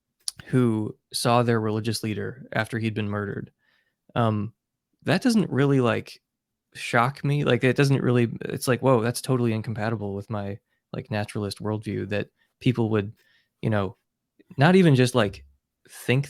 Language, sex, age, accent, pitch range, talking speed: English, male, 20-39, American, 105-130 Hz, 150 wpm